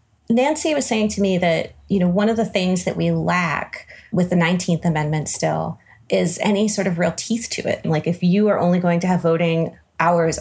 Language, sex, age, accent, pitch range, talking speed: English, female, 30-49, American, 165-205 Hz, 225 wpm